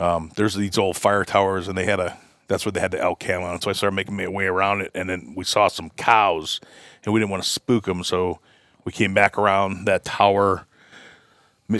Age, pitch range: 30-49, 95-105 Hz